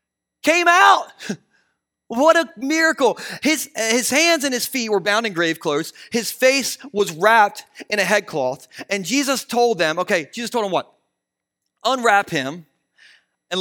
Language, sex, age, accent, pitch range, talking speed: Ukrainian, male, 30-49, American, 185-255 Hz, 155 wpm